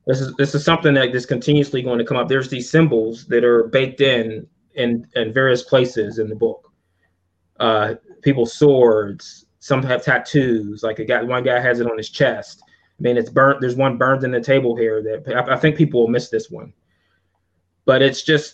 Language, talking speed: English, 210 wpm